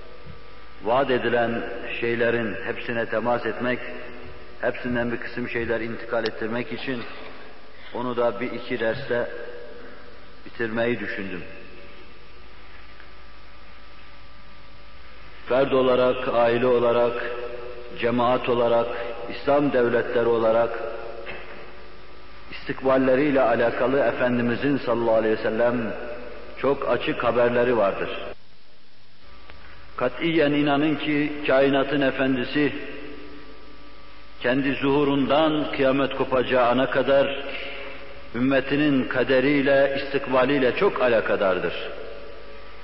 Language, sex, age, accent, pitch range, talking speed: Turkish, male, 50-69, native, 120-140 Hz, 75 wpm